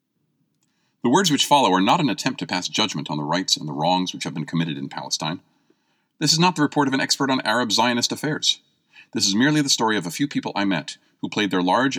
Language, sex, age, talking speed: English, male, 40-59, 250 wpm